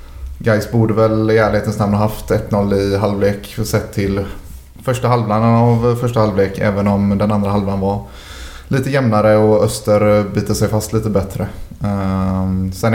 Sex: male